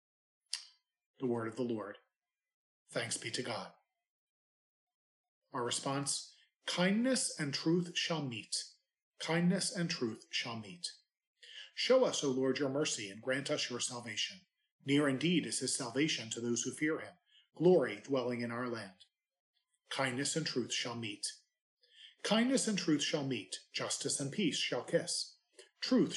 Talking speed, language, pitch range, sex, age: 145 wpm, English, 130-185 Hz, male, 40-59